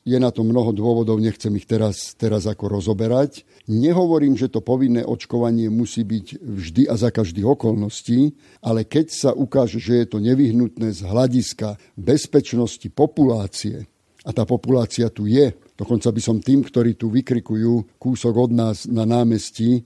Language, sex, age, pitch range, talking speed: Slovak, male, 50-69, 115-140 Hz, 155 wpm